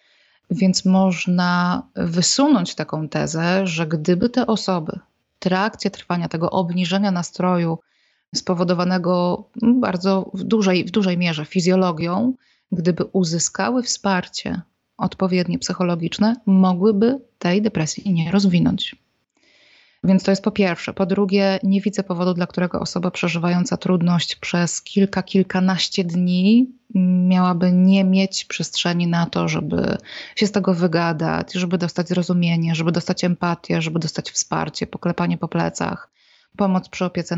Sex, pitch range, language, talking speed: female, 175-195 Hz, Polish, 125 wpm